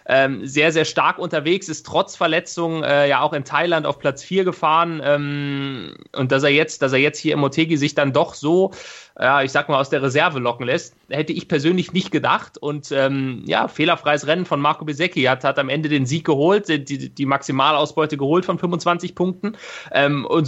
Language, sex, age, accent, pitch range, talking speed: German, male, 20-39, German, 150-190 Hz, 190 wpm